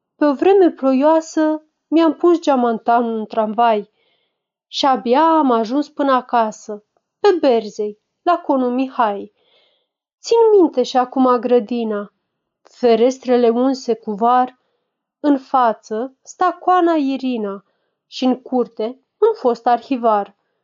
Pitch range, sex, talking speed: 225-290 Hz, female, 115 wpm